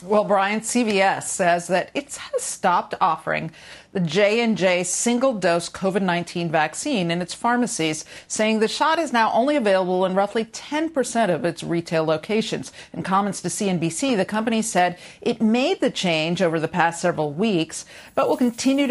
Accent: American